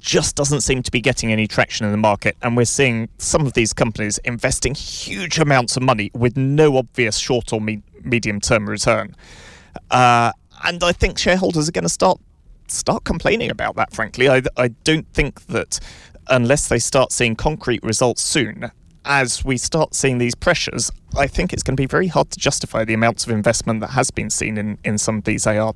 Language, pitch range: English, 105-125 Hz